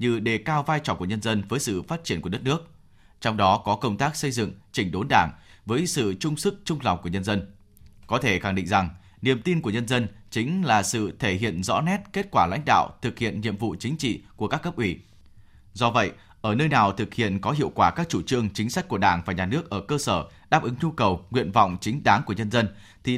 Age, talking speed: 20-39, 260 wpm